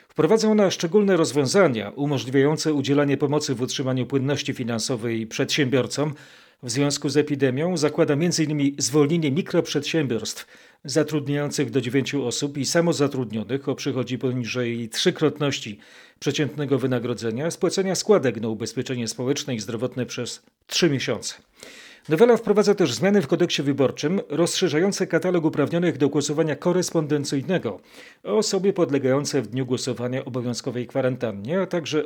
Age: 40-59